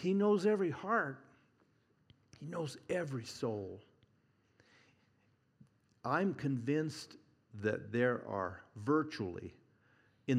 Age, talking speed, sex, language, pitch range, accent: 60-79, 85 wpm, male, English, 115-145 Hz, American